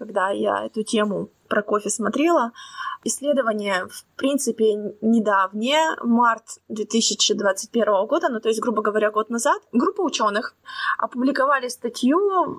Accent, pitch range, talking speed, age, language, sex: native, 210-270 Hz, 125 wpm, 20-39, Russian, female